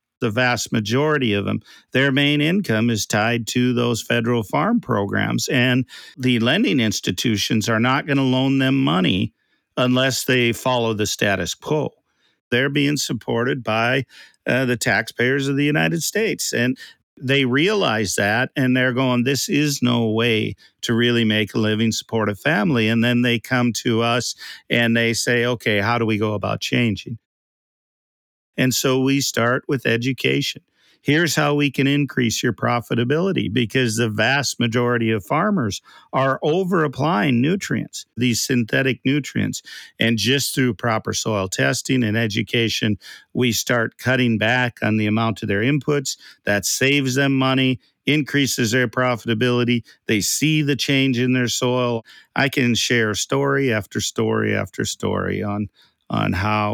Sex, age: male, 50-69